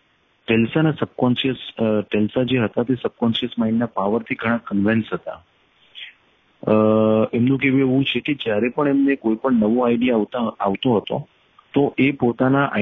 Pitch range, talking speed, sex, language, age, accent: 110-135 Hz, 120 wpm, male, English, 40-59, Indian